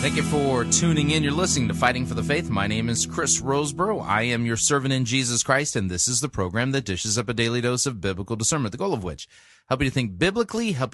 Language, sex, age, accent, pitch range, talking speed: English, male, 30-49, American, 110-140 Hz, 265 wpm